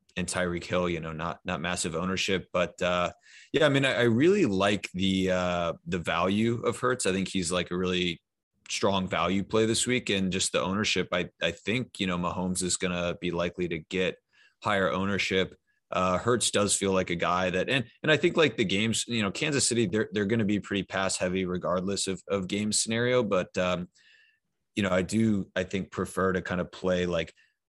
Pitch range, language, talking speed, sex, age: 90-110 Hz, English, 210 wpm, male, 30-49